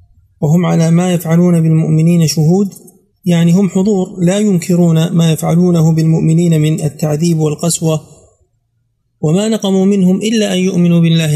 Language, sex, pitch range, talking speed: Arabic, male, 155-185 Hz, 125 wpm